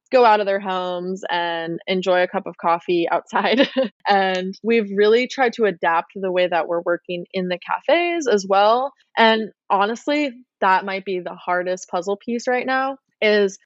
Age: 20-39